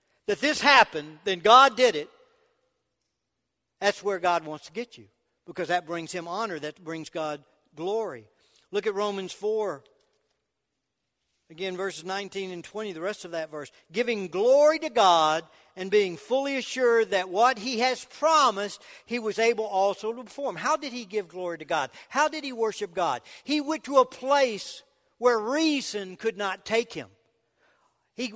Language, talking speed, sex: English, 170 wpm, male